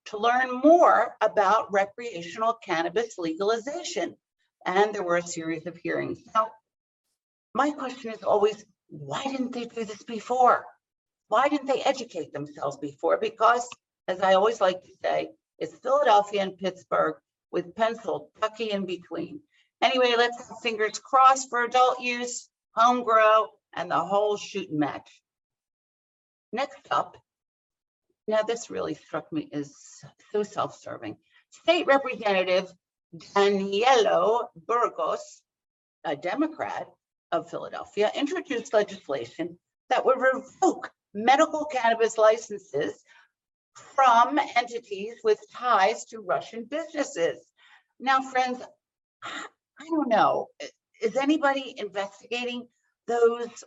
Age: 50-69